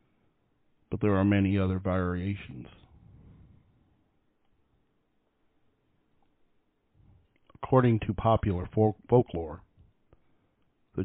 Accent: American